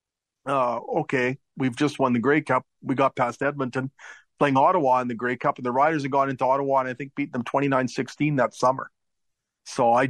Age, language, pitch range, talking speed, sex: 40-59, English, 120-140 Hz, 210 wpm, male